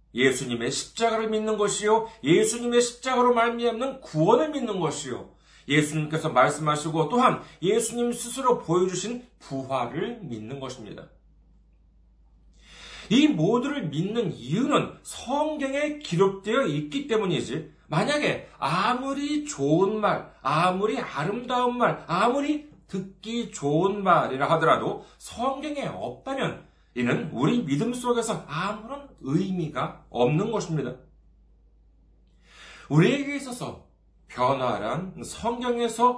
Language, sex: Korean, male